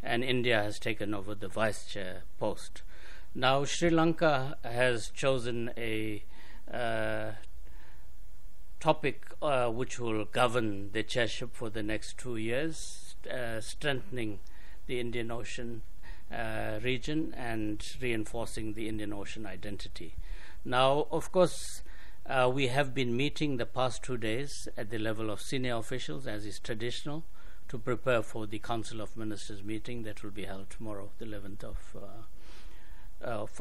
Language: English